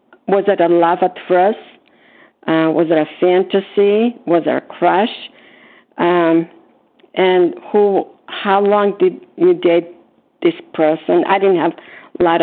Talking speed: 145 wpm